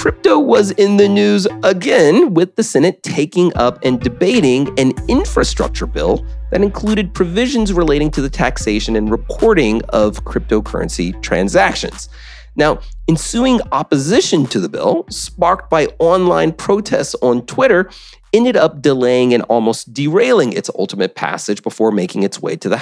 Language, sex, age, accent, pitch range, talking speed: English, male, 30-49, American, 125-205 Hz, 145 wpm